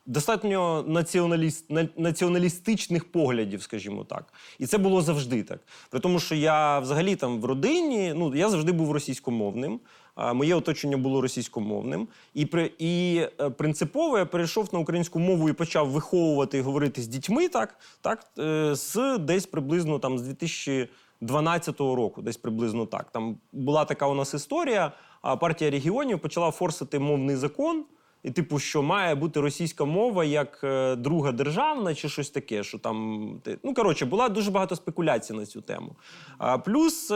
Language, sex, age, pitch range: Ukrainian, male, 30-49, 135-180 Hz